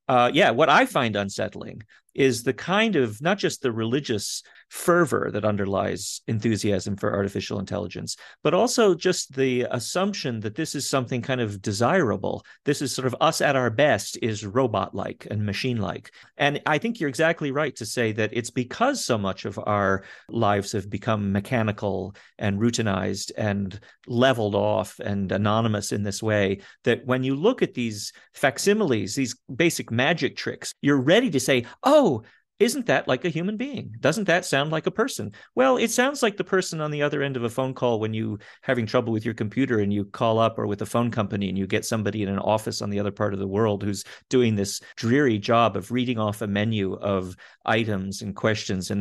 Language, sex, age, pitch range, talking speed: English, male, 40-59, 105-135 Hz, 195 wpm